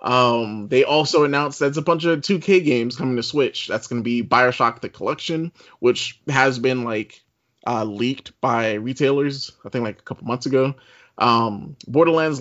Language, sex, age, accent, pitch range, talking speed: English, male, 20-39, American, 120-150 Hz, 180 wpm